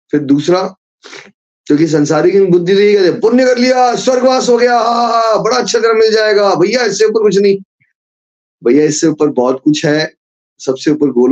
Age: 20-39